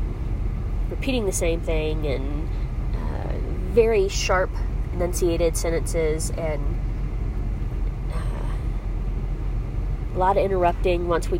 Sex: female